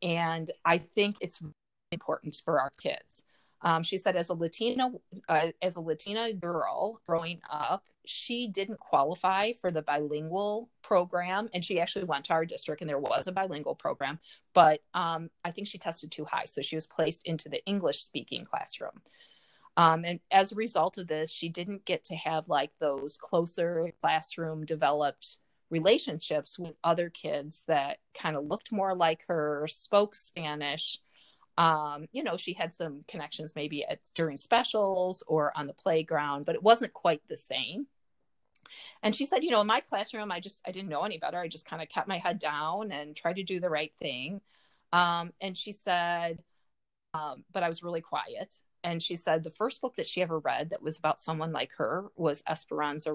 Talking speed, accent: 185 wpm, American